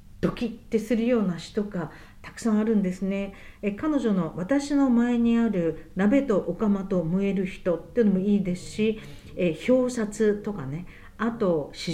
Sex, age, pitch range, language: female, 50-69, 175-225 Hz, Japanese